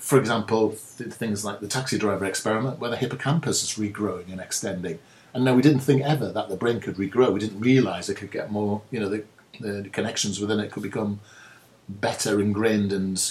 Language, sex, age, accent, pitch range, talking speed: English, male, 40-59, British, 100-130 Hz, 205 wpm